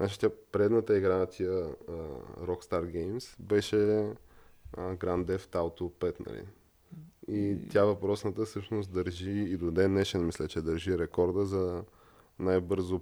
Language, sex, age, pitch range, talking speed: Bulgarian, male, 20-39, 90-100 Hz, 140 wpm